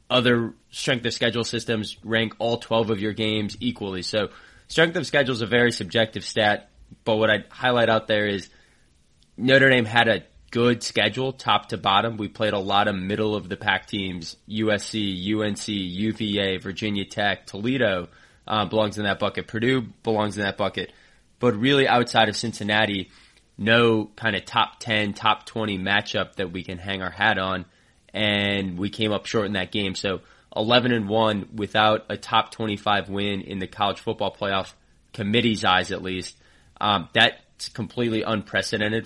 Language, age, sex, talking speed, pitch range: English, 20-39, male, 175 wpm, 100-115 Hz